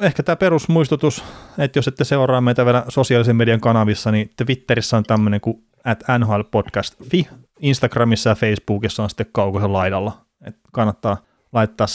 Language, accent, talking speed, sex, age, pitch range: Finnish, native, 145 wpm, male, 30-49, 105-125 Hz